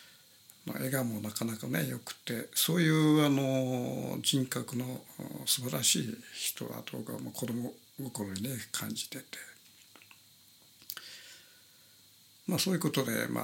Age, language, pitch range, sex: 60-79, Japanese, 105-130 Hz, male